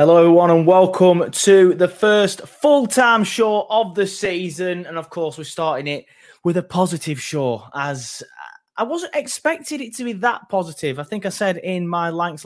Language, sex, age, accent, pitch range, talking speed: English, male, 20-39, British, 140-180 Hz, 185 wpm